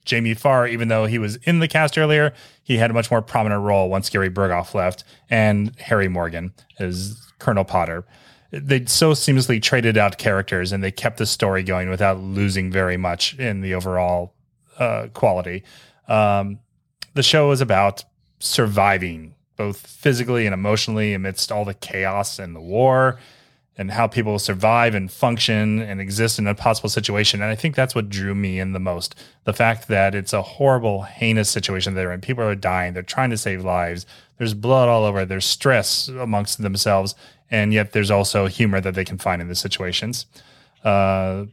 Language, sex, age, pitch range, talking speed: English, male, 30-49, 95-120 Hz, 180 wpm